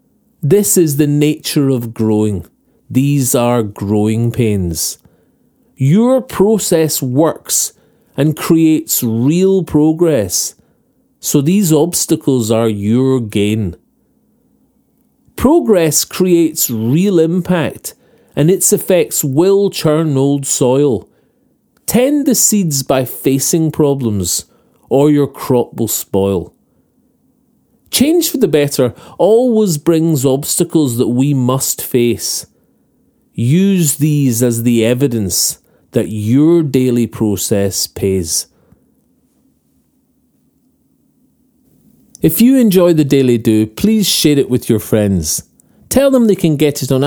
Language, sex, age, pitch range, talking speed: English, male, 40-59, 115-175 Hz, 110 wpm